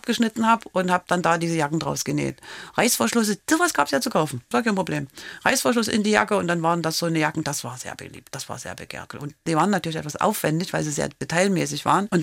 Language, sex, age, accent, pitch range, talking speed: German, female, 40-59, German, 145-190 Hz, 250 wpm